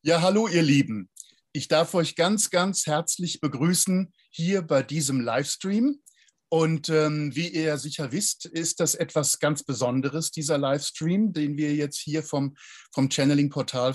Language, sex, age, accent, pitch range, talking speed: German, male, 50-69, German, 130-160 Hz, 160 wpm